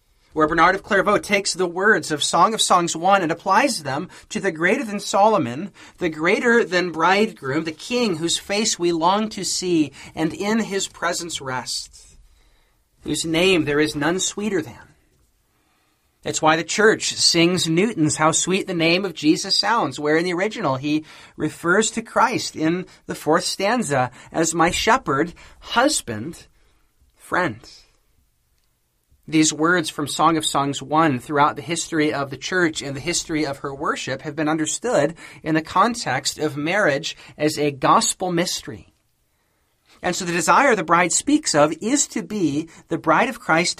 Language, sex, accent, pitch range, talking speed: English, male, American, 145-185 Hz, 165 wpm